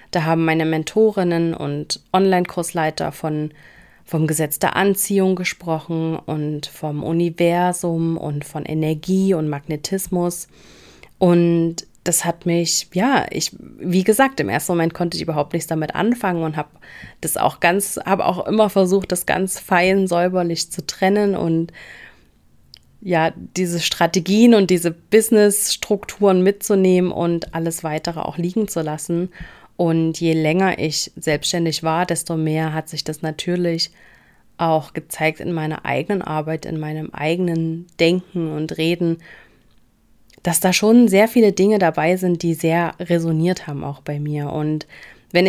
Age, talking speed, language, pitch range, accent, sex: 30-49, 140 wpm, German, 155-180 Hz, German, female